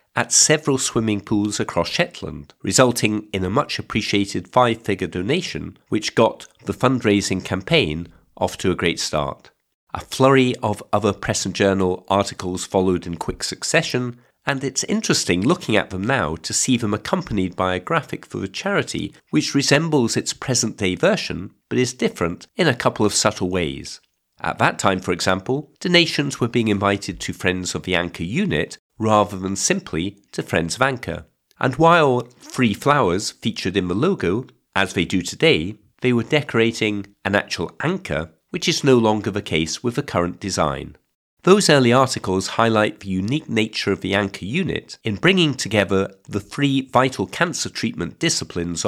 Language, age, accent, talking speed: English, 50-69, British, 165 wpm